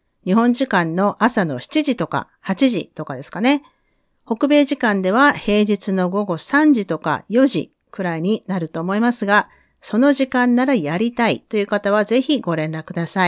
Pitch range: 175-245 Hz